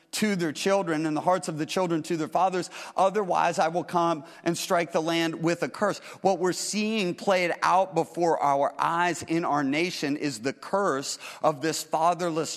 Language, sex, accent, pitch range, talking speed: English, male, American, 145-170 Hz, 190 wpm